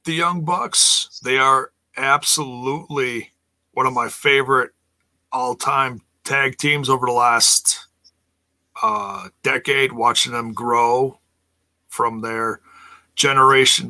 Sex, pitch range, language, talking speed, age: male, 110-135 Hz, English, 105 wpm, 40-59